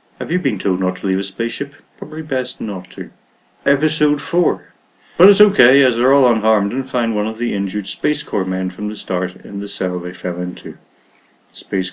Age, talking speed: 60-79, 205 wpm